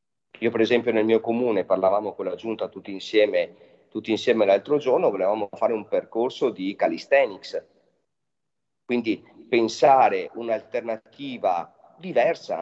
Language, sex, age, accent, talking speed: Italian, male, 30-49, native, 125 wpm